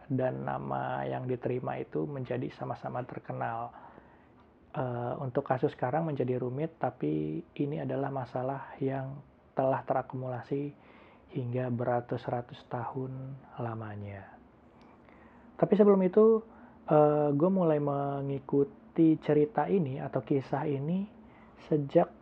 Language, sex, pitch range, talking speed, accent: Indonesian, male, 125-145 Hz, 95 wpm, native